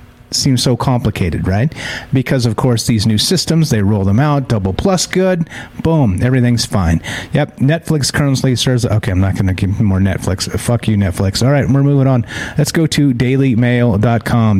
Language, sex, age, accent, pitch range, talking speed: English, male, 40-59, American, 110-140 Hz, 175 wpm